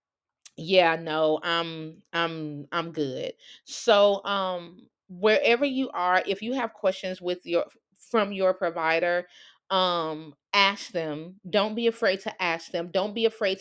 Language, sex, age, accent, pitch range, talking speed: English, female, 30-49, American, 165-225 Hz, 140 wpm